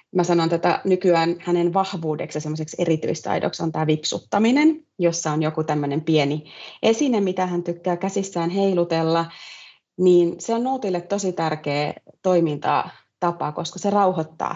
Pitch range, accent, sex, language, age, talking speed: 165-215 Hz, native, female, Finnish, 30-49, 135 wpm